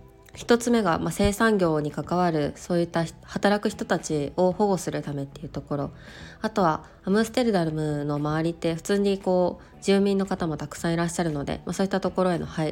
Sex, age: female, 20-39